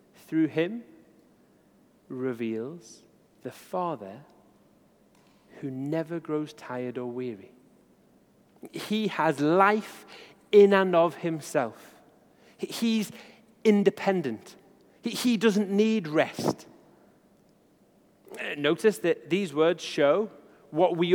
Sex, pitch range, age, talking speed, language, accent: male, 140-195 Hz, 40-59, 90 wpm, English, British